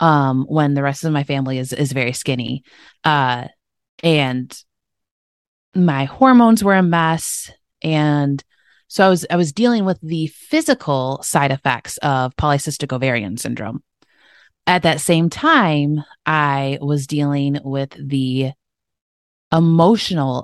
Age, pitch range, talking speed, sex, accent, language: 20-39, 135-165 Hz, 130 wpm, female, American, English